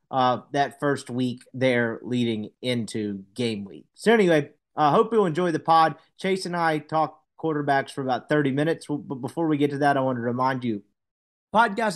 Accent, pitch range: American, 145-185 Hz